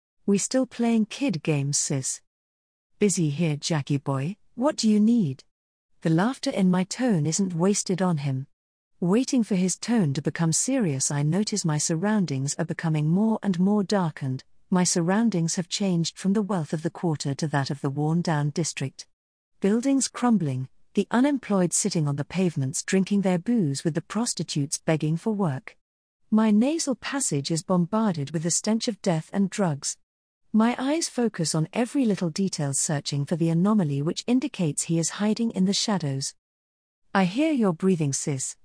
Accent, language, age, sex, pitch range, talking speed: British, English, 40-59, female, 155-215 Hz, 170 wpm